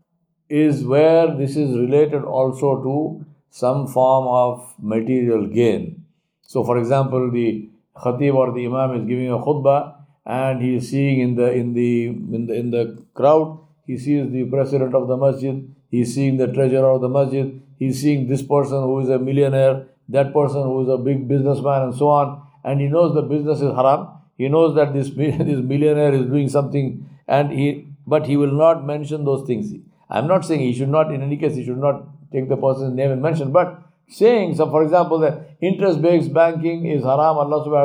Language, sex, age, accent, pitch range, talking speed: English, male, 60-79, Indian, 130-150 Hz, 200 wpm